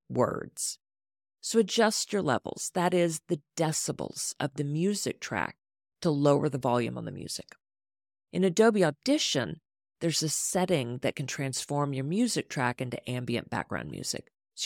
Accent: American